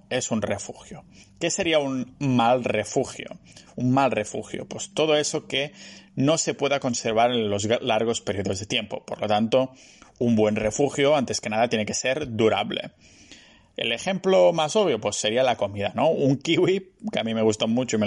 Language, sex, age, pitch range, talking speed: Spanish, male, 30-49, 110-140 Hz, 190 wpm